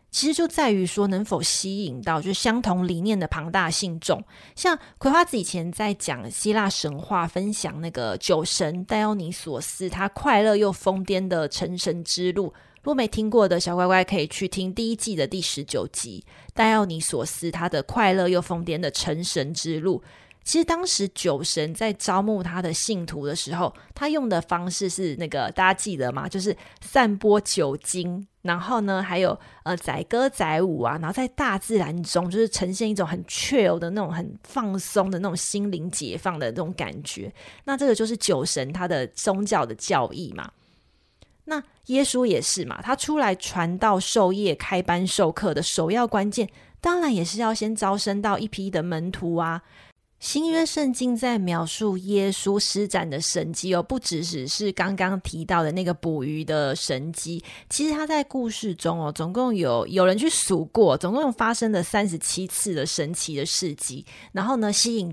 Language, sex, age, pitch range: Chinese, female, 20-39, 170-215 Hz